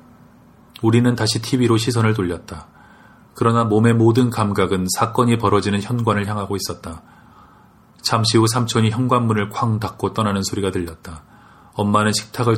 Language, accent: Korean, native